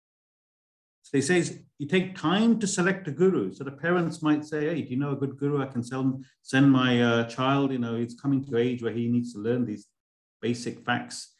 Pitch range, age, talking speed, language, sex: 105-140 Hz, 50-69, 220 wpm, English, male